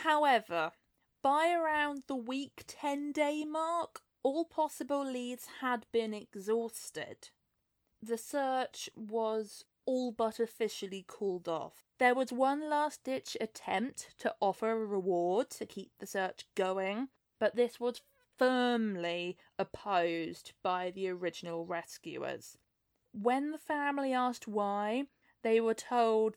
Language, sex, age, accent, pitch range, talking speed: English, female, 20-39, British, 195-260 Hz, 120 wpm